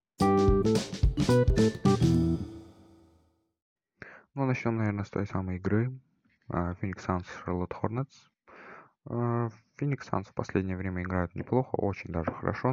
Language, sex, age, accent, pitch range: Russian, male, 20-39, native, 90-120 Hz